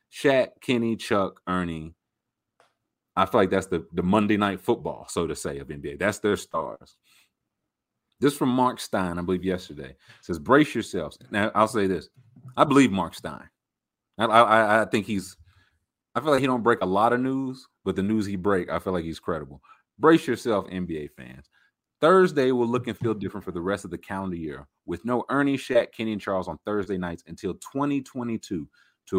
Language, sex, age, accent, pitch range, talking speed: English, male, 30-49, American, 90-120 Hz, 195 wpm